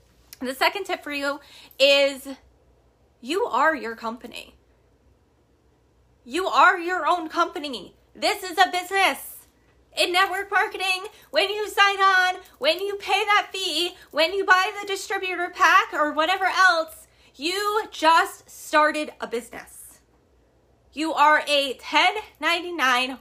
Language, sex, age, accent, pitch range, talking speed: English, female, 20-39, American, 260-355 Hz, 125 wpm